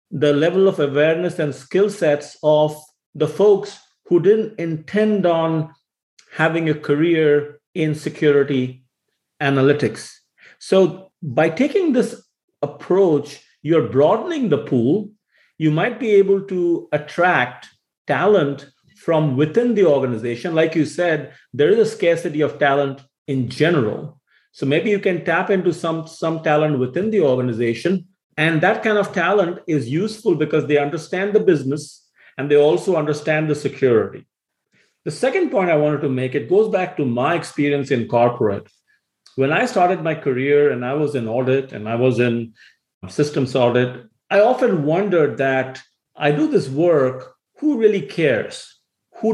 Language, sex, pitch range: English, male, 140-185 Hz